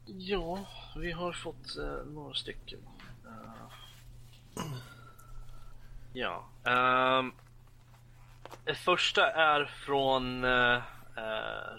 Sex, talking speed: male, 75 wpm